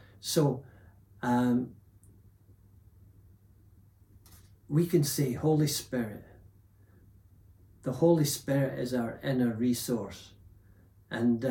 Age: 60-79